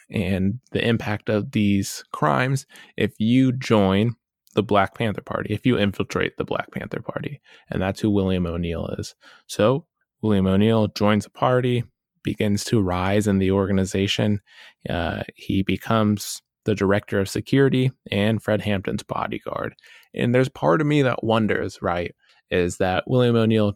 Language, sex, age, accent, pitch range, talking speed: English, male, 20-39, American, 100-120 Hz, 155 wpm